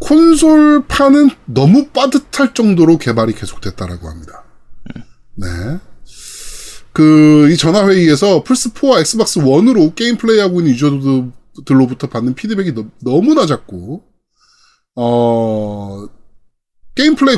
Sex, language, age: male, Korean, 20-39